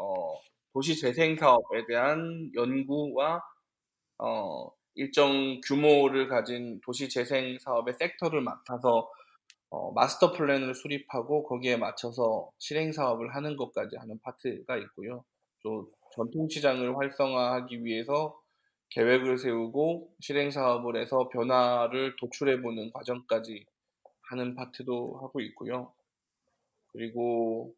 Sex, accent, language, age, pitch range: male, native, Korean, 20-39, 125-155 Hz